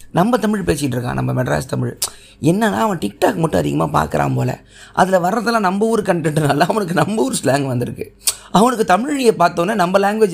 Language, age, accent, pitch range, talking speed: Tamil, 20-39, native, 120-190 Hz, 170 wpm